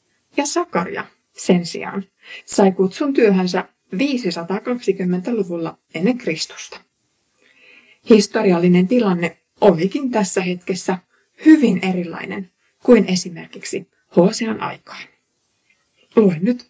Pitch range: 180-225 Hz